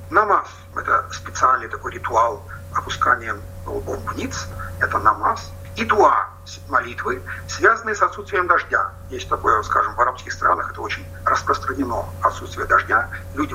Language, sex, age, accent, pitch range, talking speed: Russian, male, 50-69, native, 90-95 Hz, 125 wpm